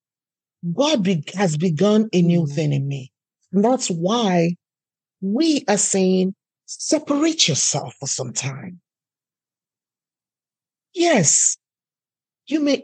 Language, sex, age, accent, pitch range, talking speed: English, male, 50-69, Nigerian, 185-275 Hz, 105 wpm